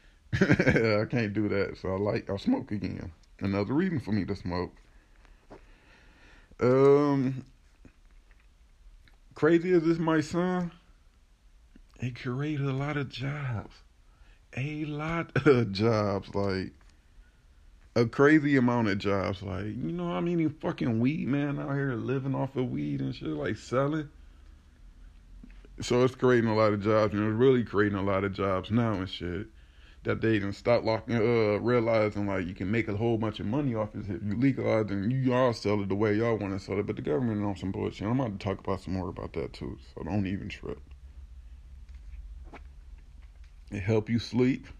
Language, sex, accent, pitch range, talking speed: English, male, American, 80-125 Hz, 175 wpm